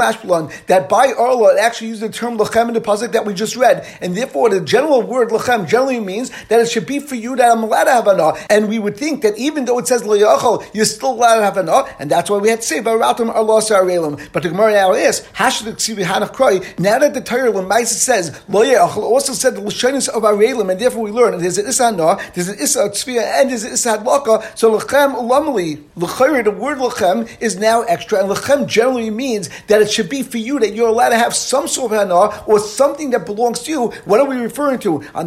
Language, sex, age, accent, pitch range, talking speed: English, male, 50-69, American, 205-250 Hz, 230 wpm